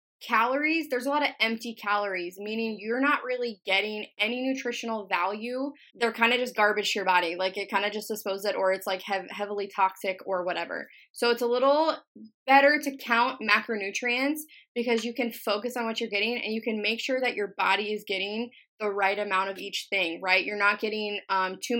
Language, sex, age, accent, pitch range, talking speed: English, female, 20-39, American, 200-245 Hz, 205 wpm